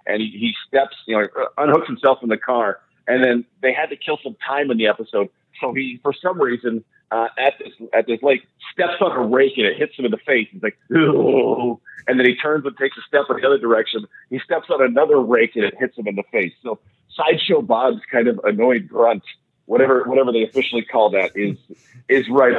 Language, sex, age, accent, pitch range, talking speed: English, male, 40-59, American, 115-150 Hz, 230 wpm